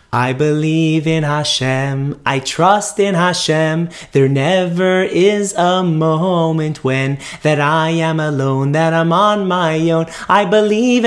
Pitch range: 140-195 Hz